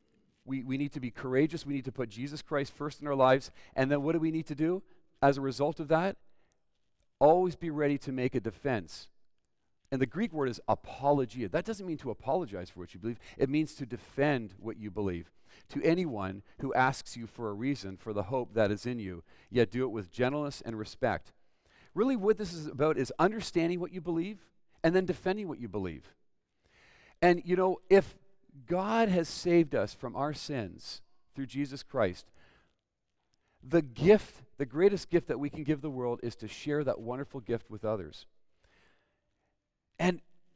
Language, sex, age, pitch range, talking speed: English, male, 40-59, 125-180 Hz, 190 wpm